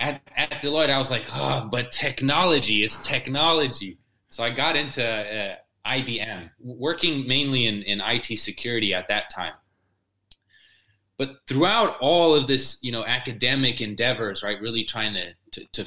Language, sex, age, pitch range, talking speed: English, male, 20-39, 110-145 Hz, 155 wpm